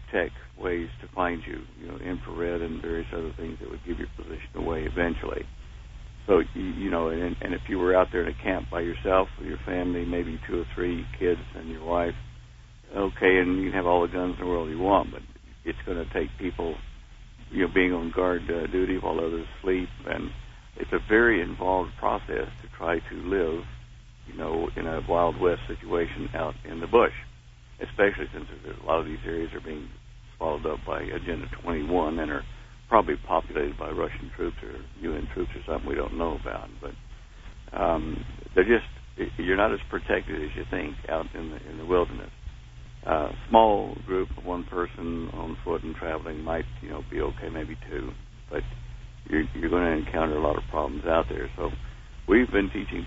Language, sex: English, male